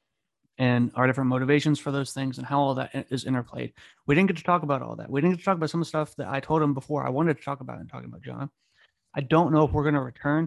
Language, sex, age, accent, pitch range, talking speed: English, male, 30-49, American, 130-145 Hz, 305 wpm